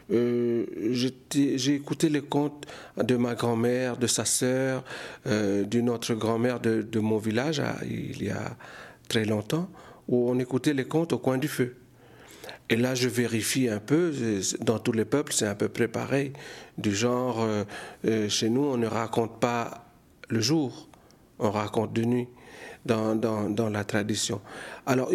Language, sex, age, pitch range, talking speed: French, male, 50-69, 115-135 Hz, 165 wpm